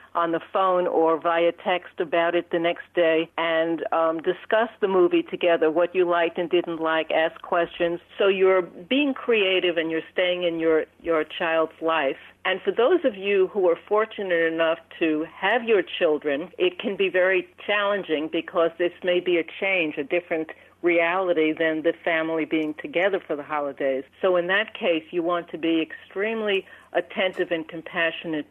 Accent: American